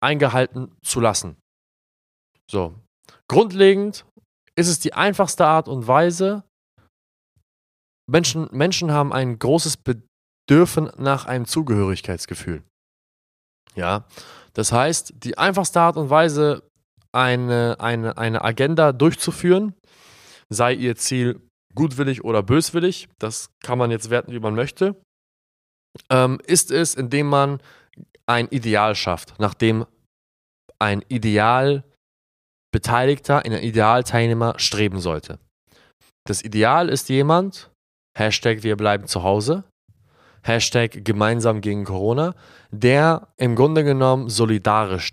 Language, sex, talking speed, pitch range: German, male, 110 wpm, 110-145 Hz